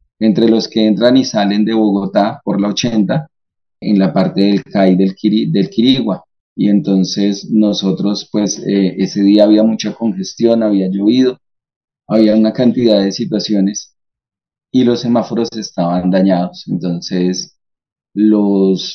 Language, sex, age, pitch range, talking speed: Spanish, male, 30-49, 95-110 Hz, 140 wpm